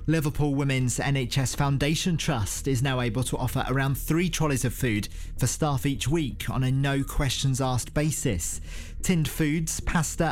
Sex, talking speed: male, 150 wpm